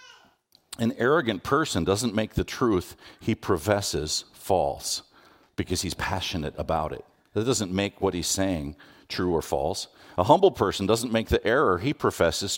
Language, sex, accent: English, male, American